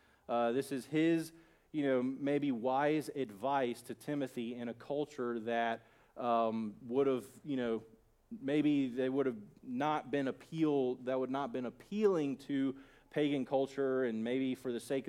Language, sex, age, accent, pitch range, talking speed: English, male, 30-49, American, 125-160 Hz, 160 wpm